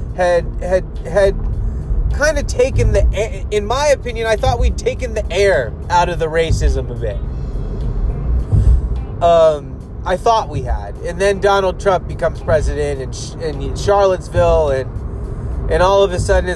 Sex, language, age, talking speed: male, English, 20-39, 150 wpm